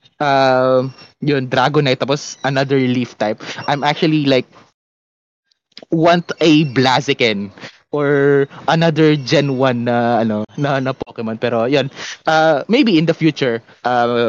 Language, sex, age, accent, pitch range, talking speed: Filipino, male, 20-39, native, 120-150 Hz, 130 wpm